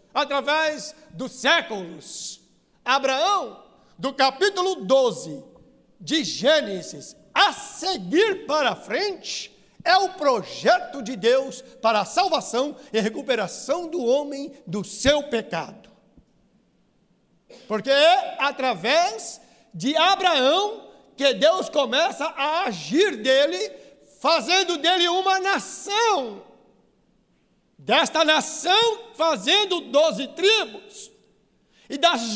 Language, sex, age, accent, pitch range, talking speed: Portuguese, male, 60-79, Brazilian, 230-350 Hz, 95 wpm